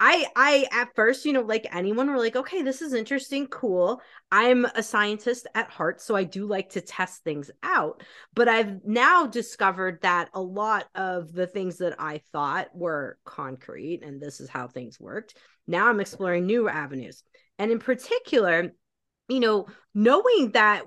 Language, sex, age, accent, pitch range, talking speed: English, female, 30-49, American, 170-235 Hz, 175 wpm